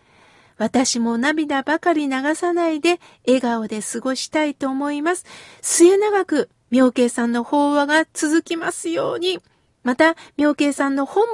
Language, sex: Japanese, female